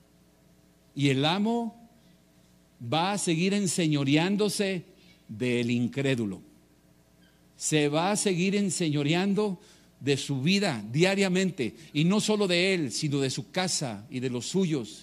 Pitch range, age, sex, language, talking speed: 130-185 Hz, 50-69, male, Spanish, 125 wpm